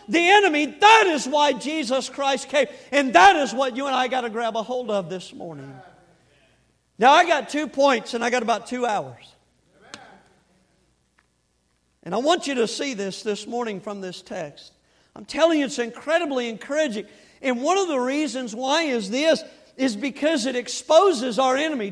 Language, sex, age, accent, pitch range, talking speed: English, male, 50-69, American, 245-300 Hz, 180 wpm